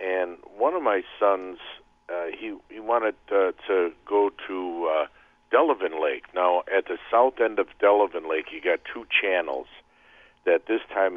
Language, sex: English, male